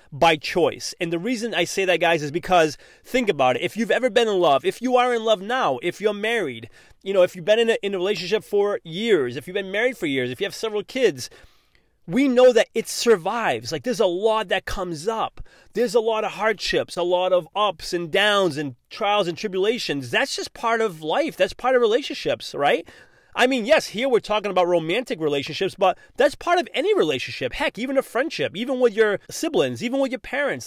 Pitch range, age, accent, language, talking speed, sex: 180-240 Hz, 30-49, American, English, 225 wpm, male